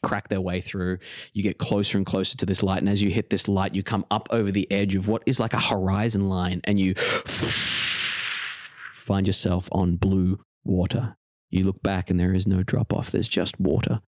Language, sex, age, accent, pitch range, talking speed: English, male, 20-39, Australian, 90-105 Hz, 210 wpm